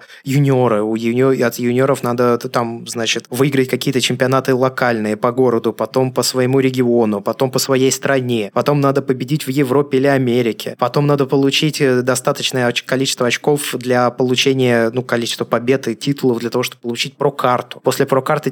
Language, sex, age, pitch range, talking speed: Russian, male, 20-39, 120-140 Hz, 155 wpm